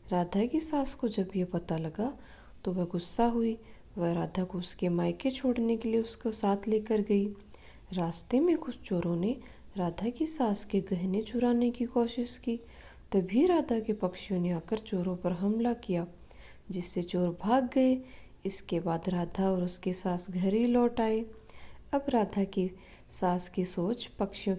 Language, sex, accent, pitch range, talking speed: Hindi, female, native, 195-265 Hz, 170 wpm